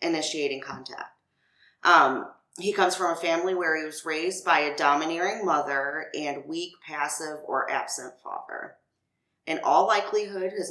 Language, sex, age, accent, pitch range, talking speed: English, female, 30-49, American, 150-190 Hz, 145 wpm